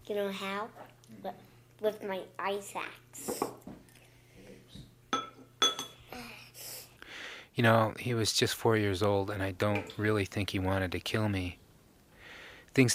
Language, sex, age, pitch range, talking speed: English, male, 30-49, 95-110 Hz, 120 wpm